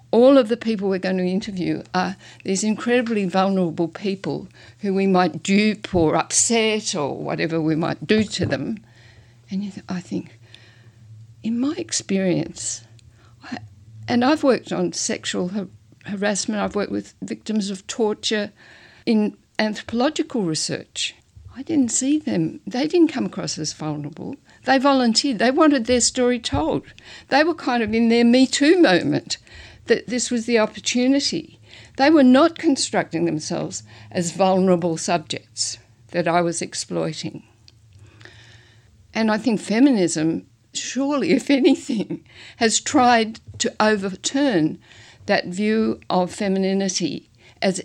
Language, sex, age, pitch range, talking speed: English, female, 60-79, 145-230 Hz, 135 wpm